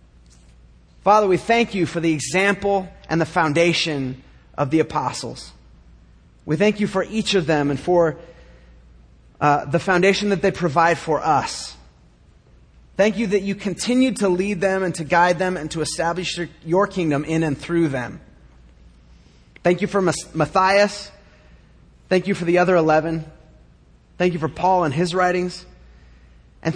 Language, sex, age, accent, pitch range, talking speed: English, male, 30-49, American, 125-185 Hz, 155 wpm